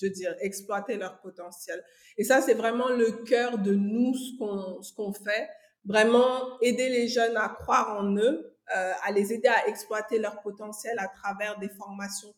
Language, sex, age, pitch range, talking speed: French, female, 50-69, 200-235 Hz, 190 wpm